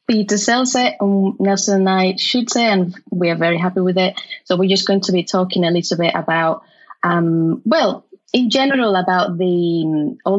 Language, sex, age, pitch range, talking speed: English, female, 20-39, 180-235 Hz, 190 wpm